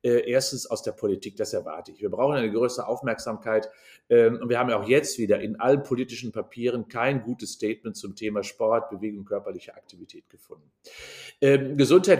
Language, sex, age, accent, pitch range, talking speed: German, male, 50-69, German, 115-145 Hz, 165 wpm